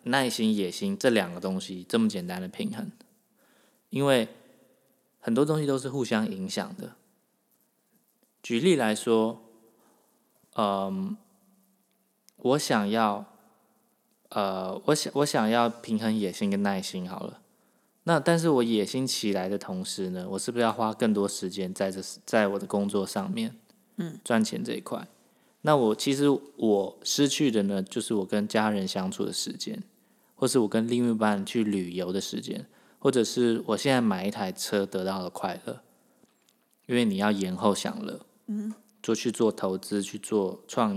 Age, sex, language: 20-39, male, Chinese